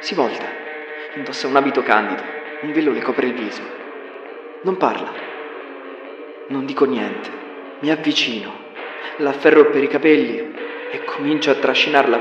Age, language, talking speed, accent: 30-49, Italian, 140 wpm, native